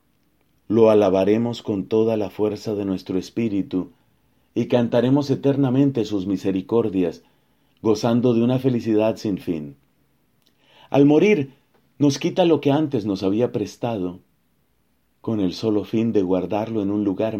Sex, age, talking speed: male, 40-59, 135 wpm